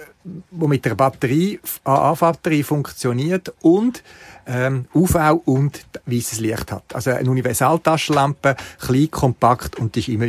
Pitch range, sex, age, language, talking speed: 110-145 Hz, male, 50-69, German, 130 wpm